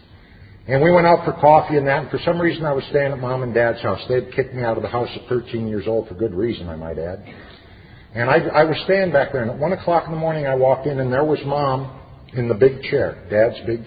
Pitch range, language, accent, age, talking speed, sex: 100-140 Hz, English, American, 50-69, 280 wpm, male